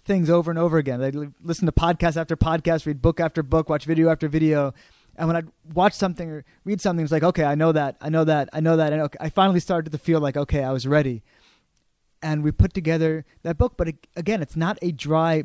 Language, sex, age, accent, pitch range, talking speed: English, male, 20-39, American, 145-180 Hz, 250 wpm